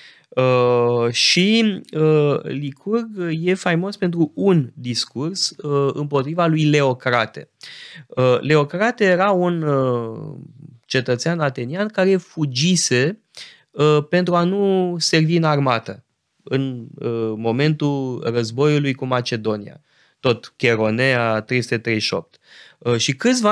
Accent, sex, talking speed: native, male, 85 wpm